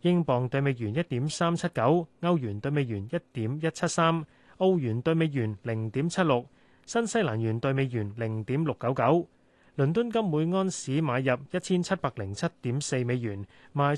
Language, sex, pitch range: Chinese, male, 125-170 Hz